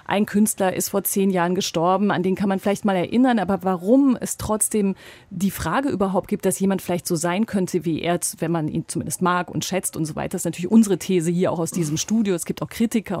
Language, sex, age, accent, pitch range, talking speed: German, female, 30-49, German, 185-215 Hz, 245 wpm